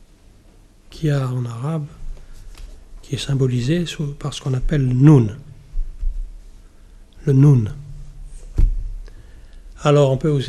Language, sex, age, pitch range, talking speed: French, male, 60-79, 105-155 Hz, 110 wpm